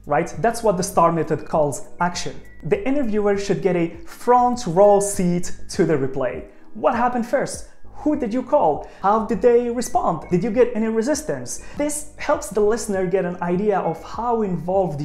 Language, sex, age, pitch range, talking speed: English, male, 30-49, 155-220 Hz, 180 wpm